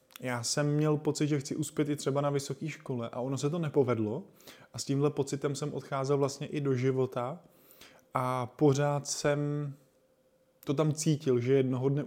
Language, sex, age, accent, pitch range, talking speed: Czech, male, 20-39, native, 125-140 Hz, 180 wpm